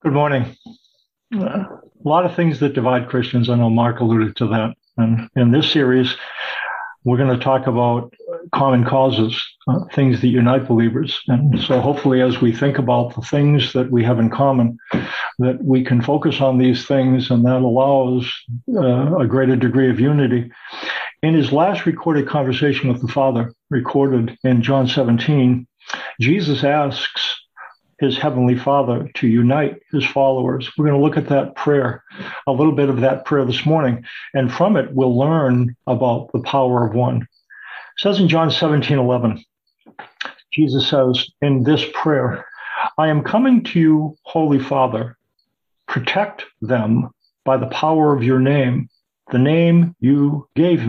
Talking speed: 160 wpm